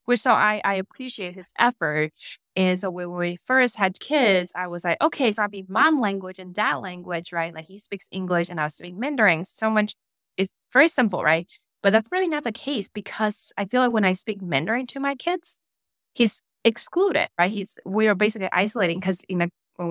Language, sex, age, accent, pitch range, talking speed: English, female, 20-39, American, 175-220 Hz, 210 wpm